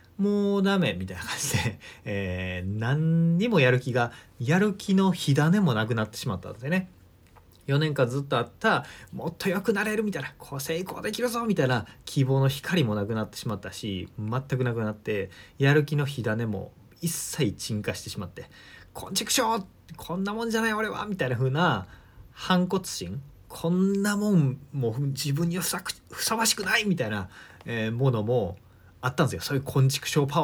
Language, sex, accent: Japanese, male, native